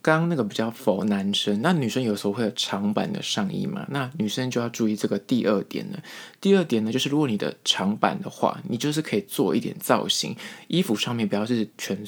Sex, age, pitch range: male, 20-39, 105-150 Hz